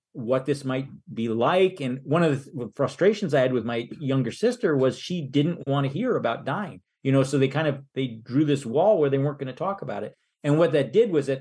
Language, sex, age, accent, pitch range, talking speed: English, male, 40-59, American, 125-155 Hz, 250 wpm